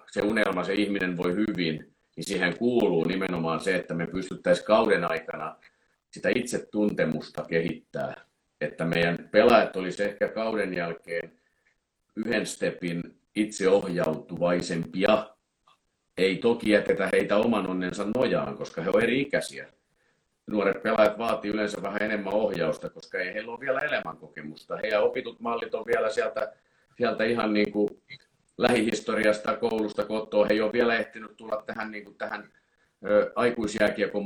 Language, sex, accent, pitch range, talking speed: Finnish, male, native, 90-105 Hz, 135 wpm